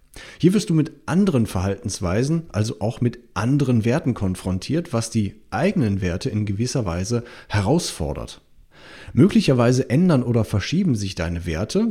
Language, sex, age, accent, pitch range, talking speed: German, male, 30-49, German, 100-145 Hz, 135 wpm